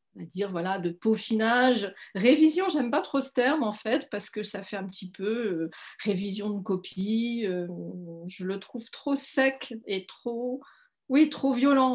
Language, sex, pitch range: French, female, 190-255 Hz